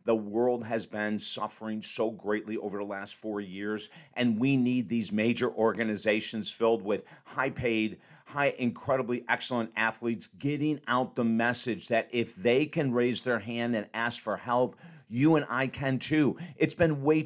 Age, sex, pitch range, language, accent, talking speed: 50-69, male, 115-140 Hz, English, American, 165 wpm